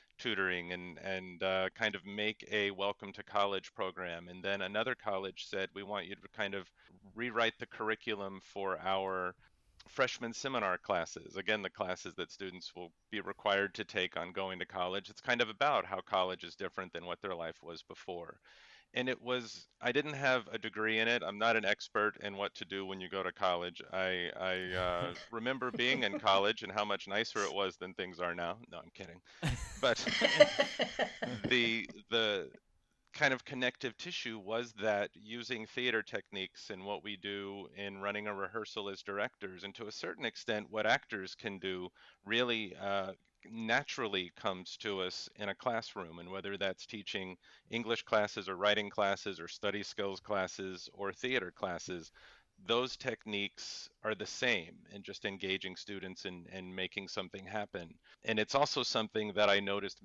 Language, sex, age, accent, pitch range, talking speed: English, male, 40-59, American, 95-110 Hz, 180 wpm